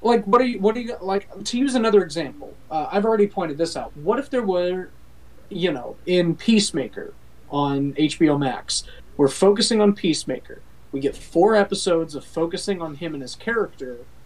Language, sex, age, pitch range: English, male, 30-49, 145-200 Hz